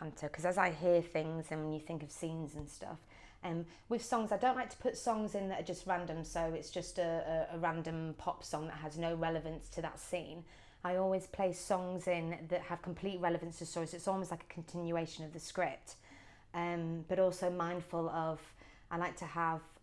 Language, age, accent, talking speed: English, 20-39, British, 215 wpm